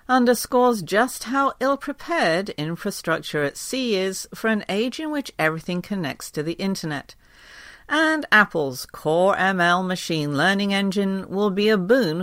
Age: 50-69